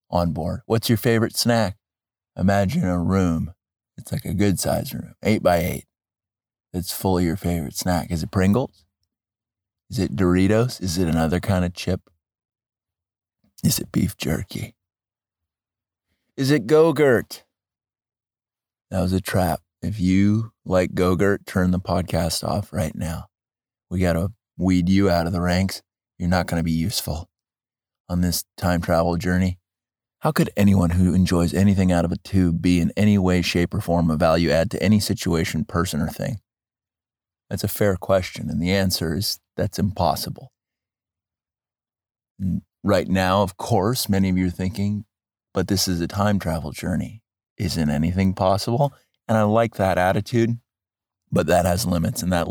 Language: English